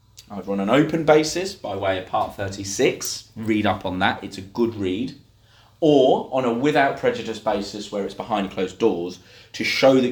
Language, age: English, 30-49